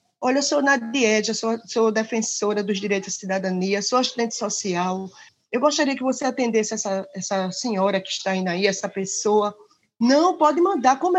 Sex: female